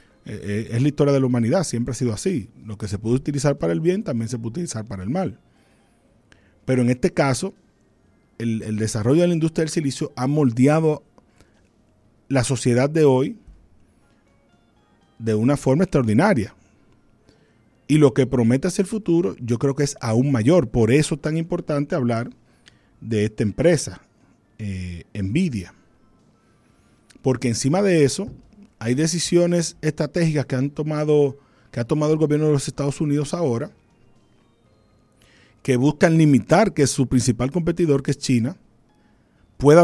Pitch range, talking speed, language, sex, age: 115-155 Hz, 155 wpm, Spanish, male, 40-59